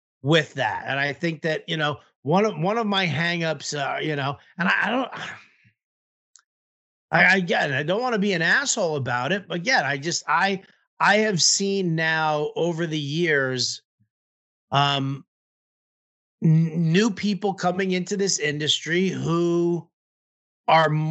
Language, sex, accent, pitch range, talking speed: English, male, American, 145-185 Hz, 150 wpm